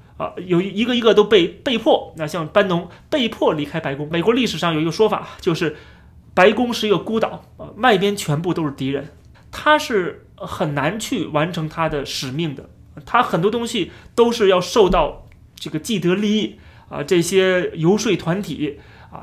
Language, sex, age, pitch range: Chinese, male, 30-49, 160-230 Hz